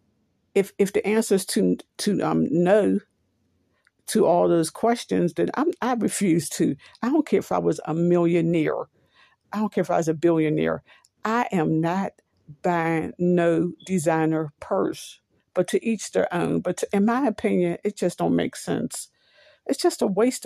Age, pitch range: 60-79, 165-220 Hz